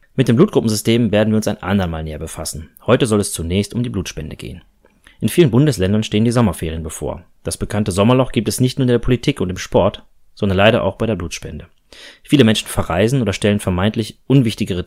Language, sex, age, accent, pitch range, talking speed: German, male, 30-49, German, 90-115 Hz, 205 wpm